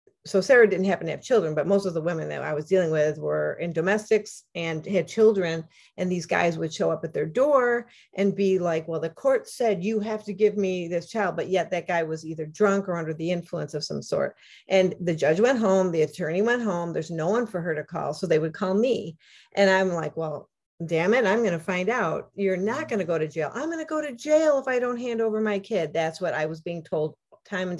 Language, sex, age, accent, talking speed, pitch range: English, female, 50-69, American, 260 wpm, 165-205 Hz